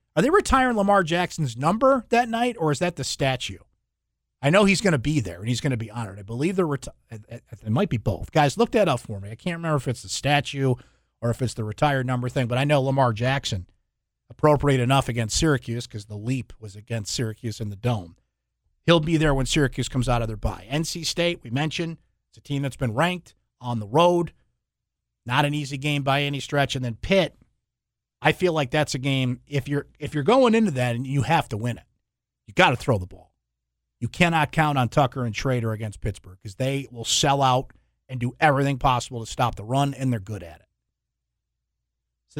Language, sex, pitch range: English, male, 115-155 Hz